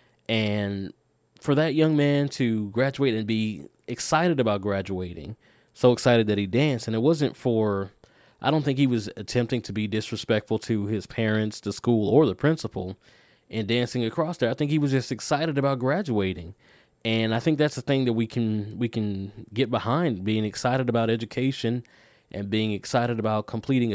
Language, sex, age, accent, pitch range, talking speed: English, male, 20-39, American, 105-130 Hz, 180 wpm